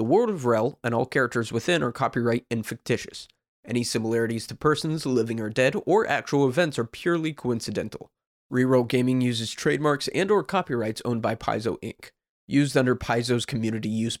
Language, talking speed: English, 175 wpm